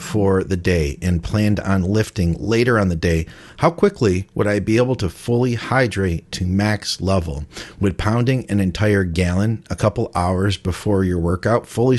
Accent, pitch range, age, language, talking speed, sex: American, 90-110 Hz, 40-59, English, 175 wpm, male